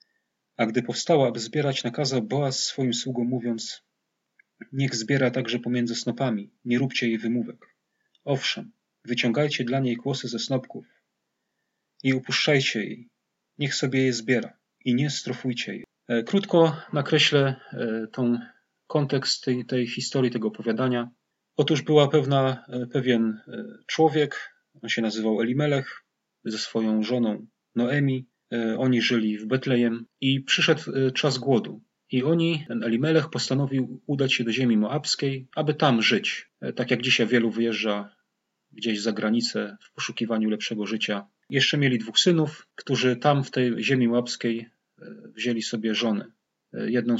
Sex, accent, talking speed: male, native, 135 wpm